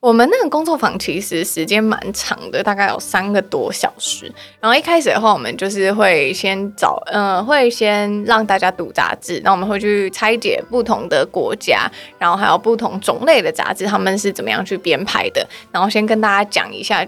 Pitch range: 195-245 Hz